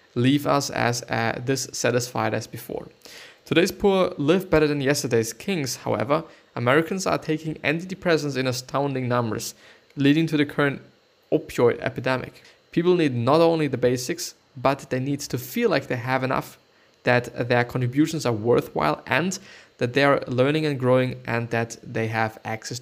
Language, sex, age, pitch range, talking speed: English, male, 20-39, 115-145 Hz, 160 wpm